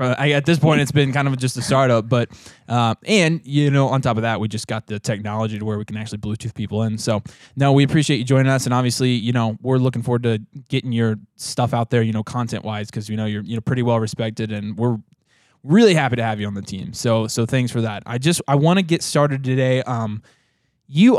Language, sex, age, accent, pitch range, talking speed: English, male, 20-39, American, 115-145 Hz, 250 wpm